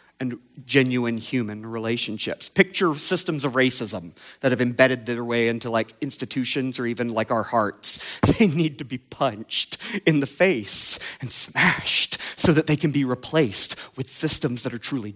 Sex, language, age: male, English, 40-59